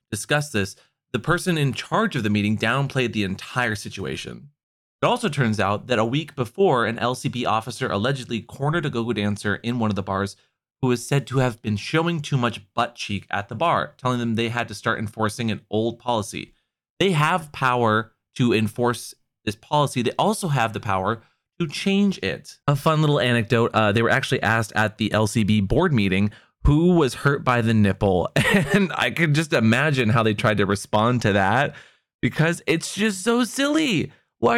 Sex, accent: male, American